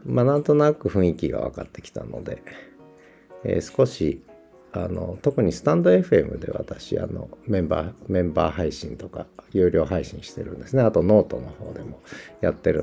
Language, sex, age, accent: Japanese, male, 50-69, native